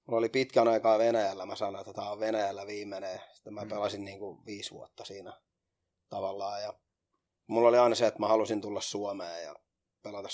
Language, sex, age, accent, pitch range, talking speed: Finnish, male, 30-49, native, 100-110 Hz, 190 wpm